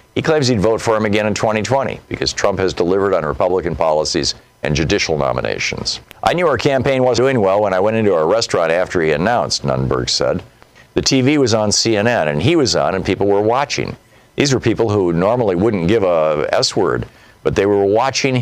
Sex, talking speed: male, 205 wpm